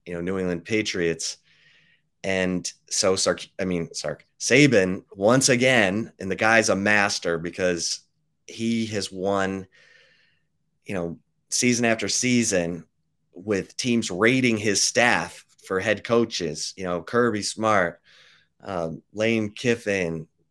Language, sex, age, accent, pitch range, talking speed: English, male, 30-49, American, 90-115 Hz, 125 wpm